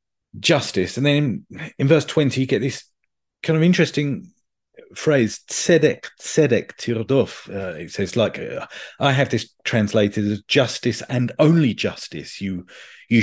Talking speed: 145 wpm